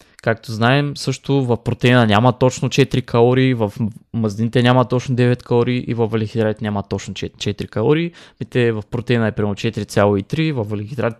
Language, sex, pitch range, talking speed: Bulgarian, male, 110-125 Hz, 155 wpm